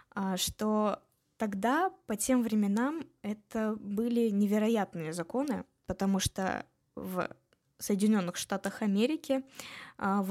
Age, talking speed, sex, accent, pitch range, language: 20-39, 95 wpm, female, native, 205-240 Hz, Russian